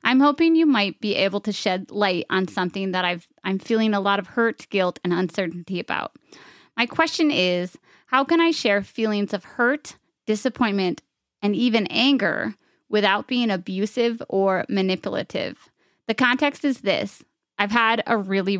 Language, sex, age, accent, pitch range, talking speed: English, female, 30-49, American, 190-240 Hz, 160 wpm